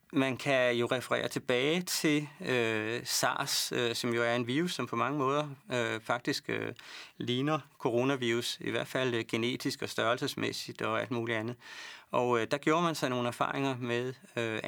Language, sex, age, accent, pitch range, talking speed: Danish, male, 30-49, native, 115-135 Hz, 180 wpm